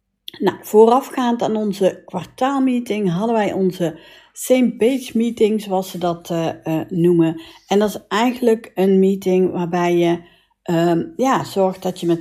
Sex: female